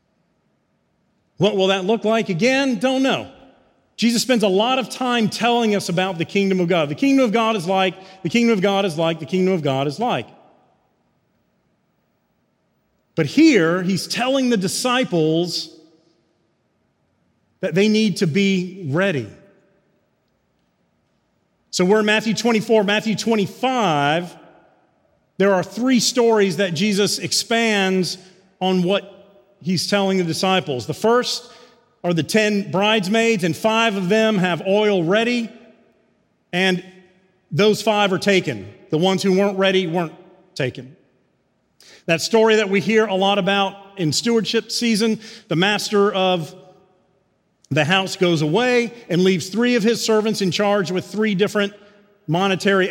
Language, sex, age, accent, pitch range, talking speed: English, male, 40-59, American, 180-220 Hz, 145 wpm